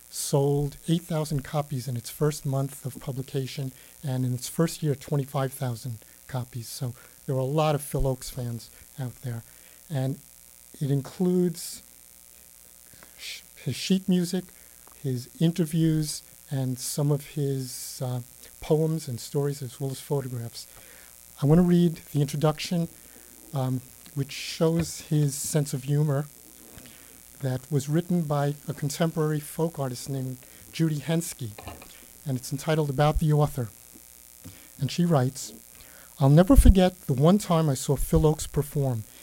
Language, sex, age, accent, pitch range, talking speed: English, male, 50-69, American, 130-160 Hz, 140 wpm